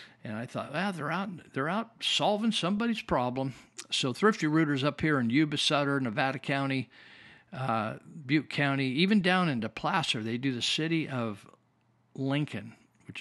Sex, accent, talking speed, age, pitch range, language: male, American, 160 wpm, 50-69, 120-155 Hz, English